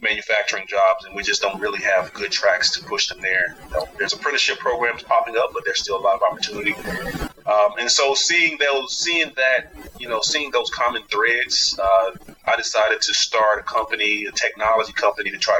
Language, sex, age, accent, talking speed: English, male, 30-49, American, 195 wpm